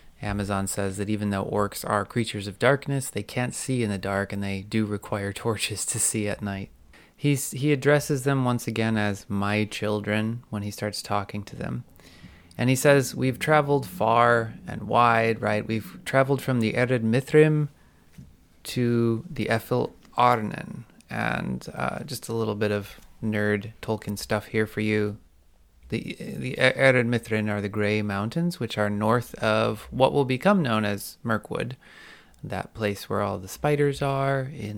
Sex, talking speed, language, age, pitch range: male, 165 wpm, English, 30-49, 105-130 Hz